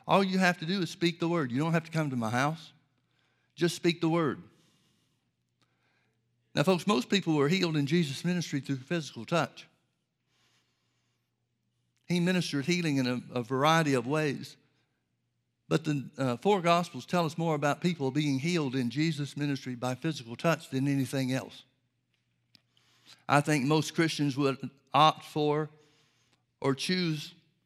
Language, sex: English, male